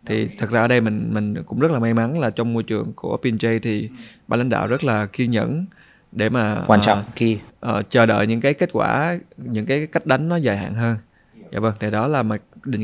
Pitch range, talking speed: 110-155 Hz, 245 wpm